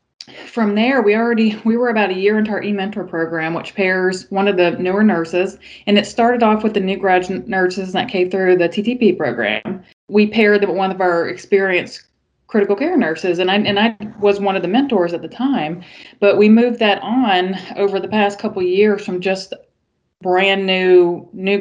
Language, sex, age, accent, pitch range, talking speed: English, female, 20-39, American, 175-205 Hz, 205 wpm